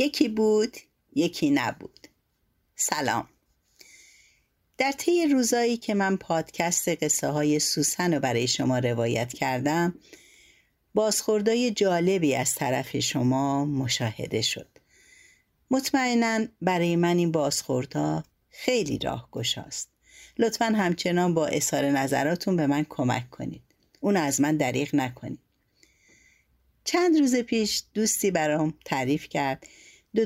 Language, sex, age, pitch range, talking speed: Persian, female, 50-69, 140-205 Hz, 115 wpm